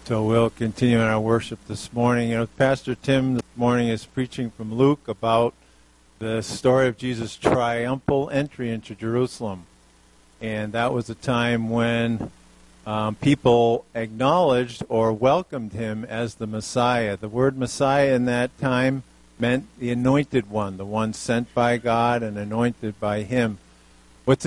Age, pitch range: 50-69, 110-135 Hz